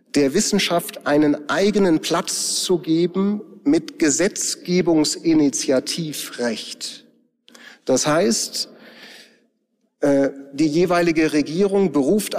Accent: German